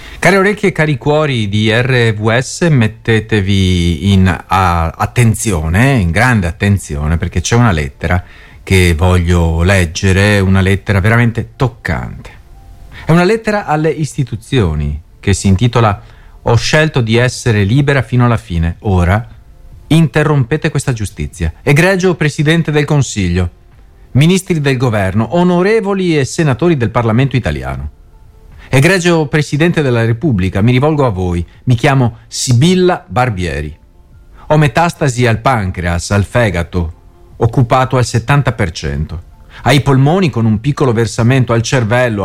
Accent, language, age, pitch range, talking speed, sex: native, Italian, 40-59, 95-145 Hz, 120 wpm, male